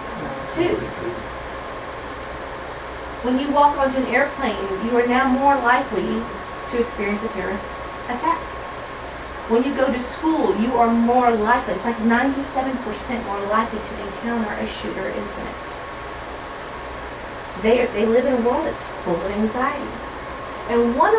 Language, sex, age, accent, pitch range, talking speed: English, female, 30-49, American, 215-250 Hz, 140 wpm